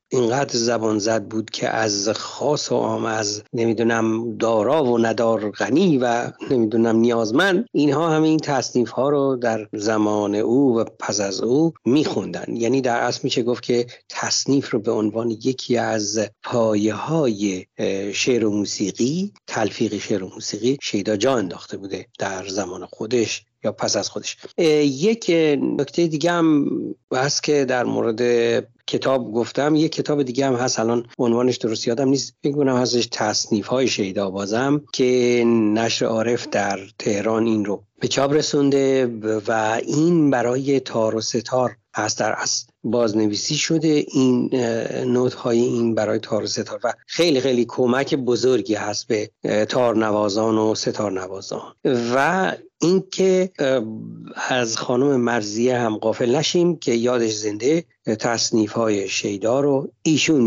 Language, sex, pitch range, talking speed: Persian, male, 110-130 Hz, 140 wpm